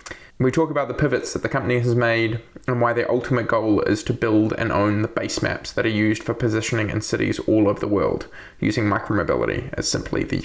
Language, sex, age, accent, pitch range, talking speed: English, male, 20-39, Australian, 110-130 Hz, 225 wpm